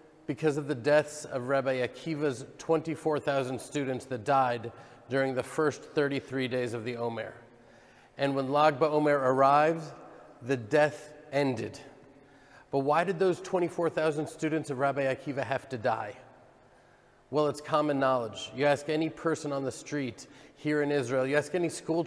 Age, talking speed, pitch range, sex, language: 30-49, 155 wpm, 130-155 Hz, male, English